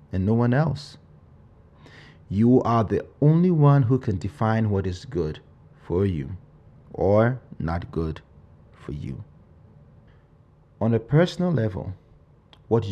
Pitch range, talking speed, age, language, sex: 95-125 Hz, 120 wpm, 30-49, English, male